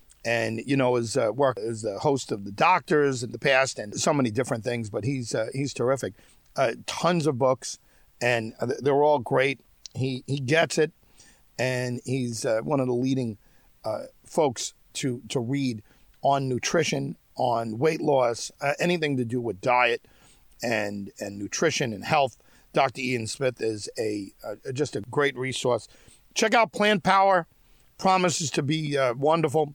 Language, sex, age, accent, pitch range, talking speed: English, male, 50-69, American, 125-160 Hz, 170 wpm